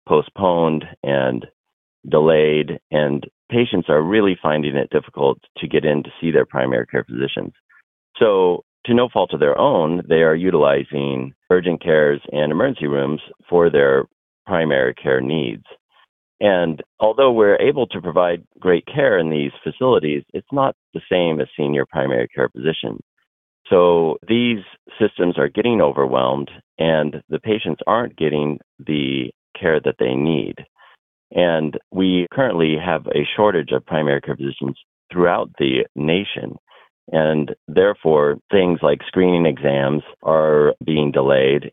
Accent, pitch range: American, 70-85 Hz